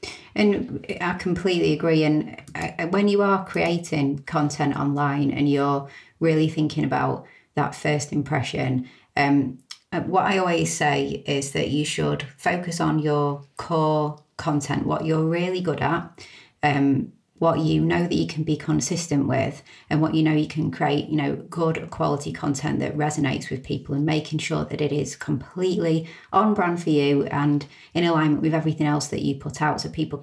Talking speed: 175 wpm